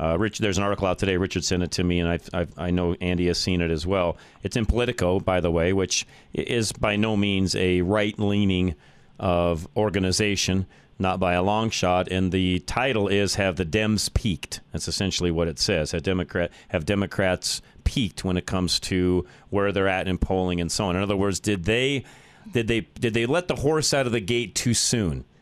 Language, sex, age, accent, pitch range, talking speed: English, male, 40-59, American, 90-110 Hz, 210 wpm